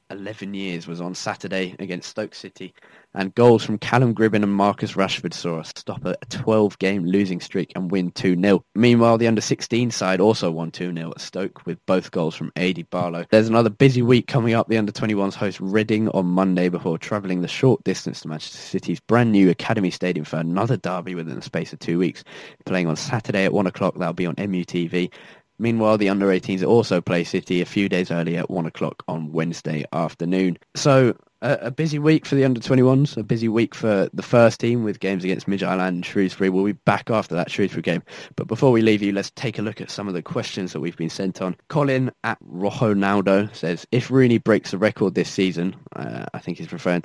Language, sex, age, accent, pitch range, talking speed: English, male, 10-29, British, 90-115 Hz, 210 wpm